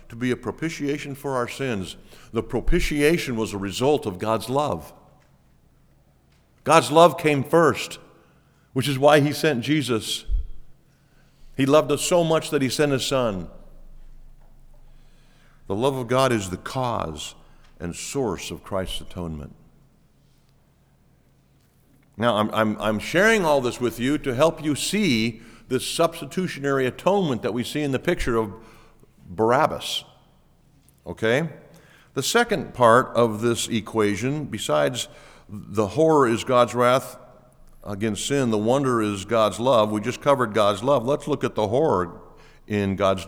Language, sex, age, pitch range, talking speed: English, male, 50-69, 110-145 Hz, 145 wpm